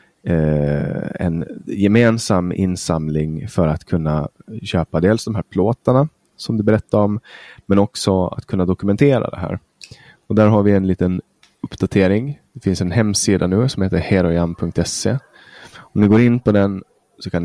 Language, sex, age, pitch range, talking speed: Swedish, male, 20-39, 85-105 Hz, 155 wpm